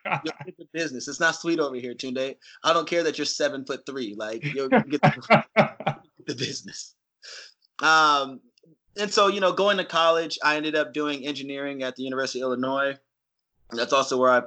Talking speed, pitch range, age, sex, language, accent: 200 wpm, 120-145 Hz, 30-49, male, English, American